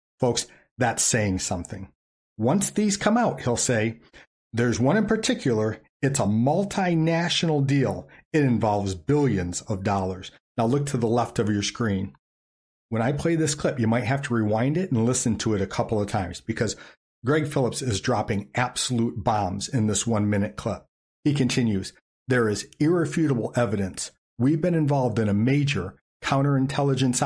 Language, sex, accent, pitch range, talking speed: English, male, American, 105-145 Hz, 165 wpm